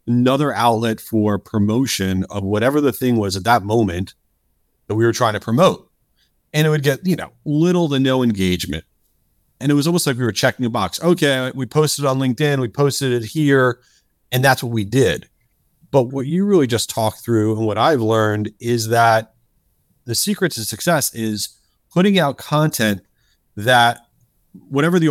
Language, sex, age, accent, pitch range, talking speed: English, male, 40-59, American, 115-150 Hz, 180 wpm